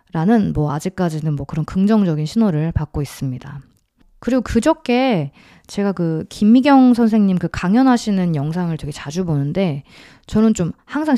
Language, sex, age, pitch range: Korean, female, 20-39, 155-220 Hz